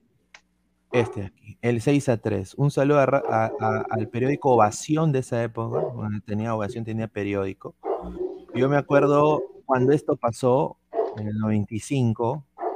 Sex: male